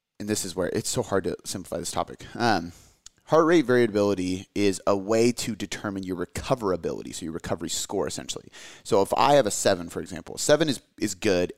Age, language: 30-49, English